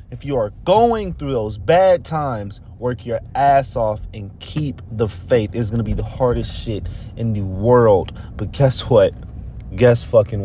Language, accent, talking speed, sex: English, American, 170 wpm, male